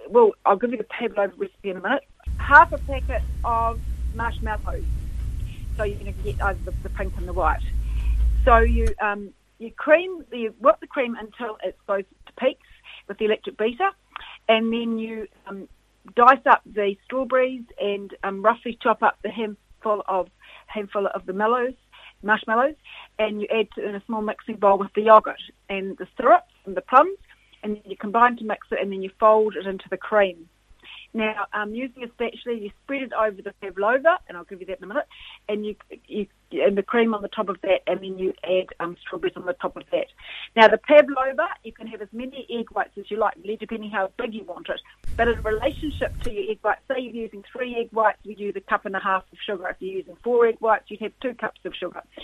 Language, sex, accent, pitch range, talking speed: English, female, Australian, 195-235 Hz, 225 wpm